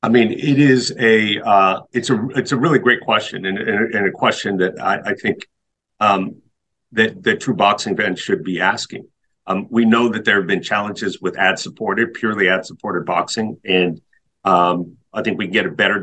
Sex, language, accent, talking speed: male, English, American, 200 wpm